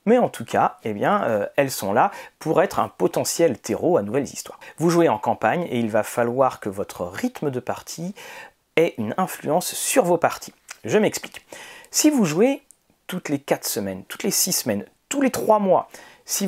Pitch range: 130-190 Hz